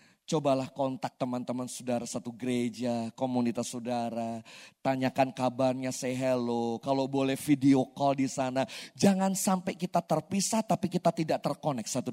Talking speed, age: 135 wpm, 30-49